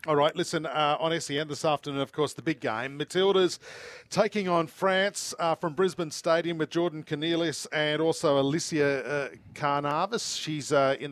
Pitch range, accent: 135-165 Hz, Australian